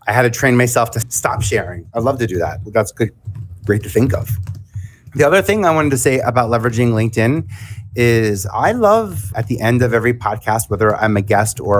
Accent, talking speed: American, 220 wpm